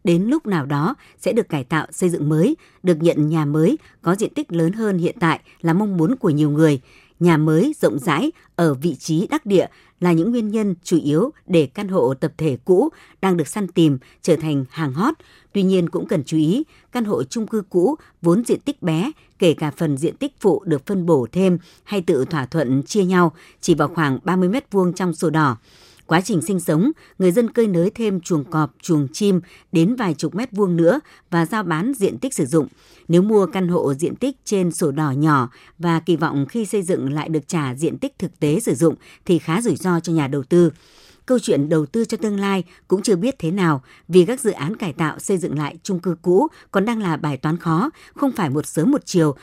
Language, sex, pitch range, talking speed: Vietnamese, male, 155-205 Hz, 230 wpm